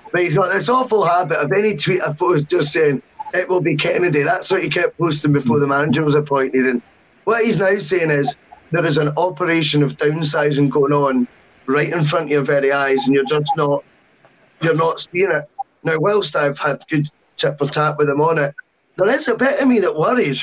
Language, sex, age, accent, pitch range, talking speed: English, male, 10-29, British, 145-185 Hz, 225 wpm